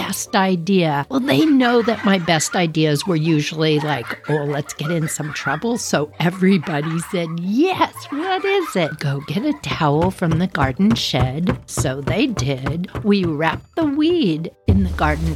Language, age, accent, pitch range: English, 60-79, American, 155-225 Hz